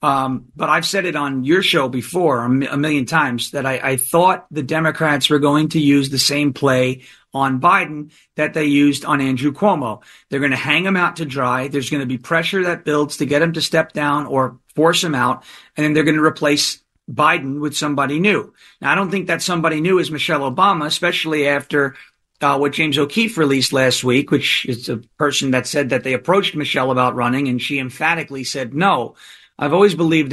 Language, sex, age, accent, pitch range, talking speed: English, male, 40-59, American, 130-165 Hz, 215 wpm